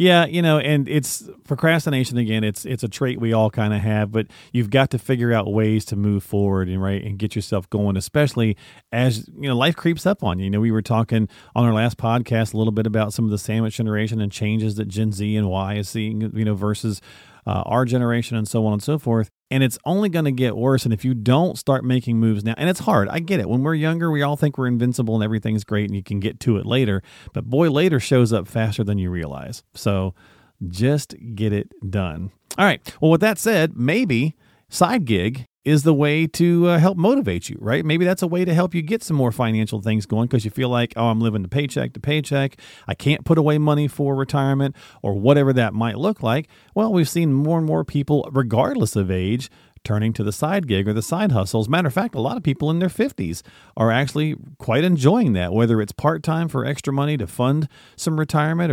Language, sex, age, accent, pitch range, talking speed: English, male, 40-59, American, 110-150 Hz, 235 wpm